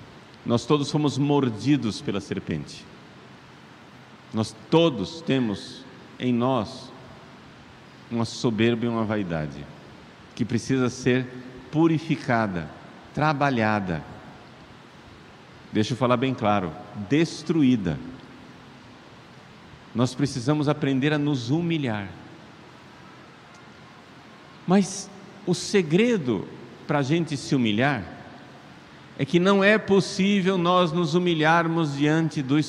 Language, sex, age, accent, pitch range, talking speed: Portuguese, male, 50-69, Brazilian, 115-155 Hz, 95 wpm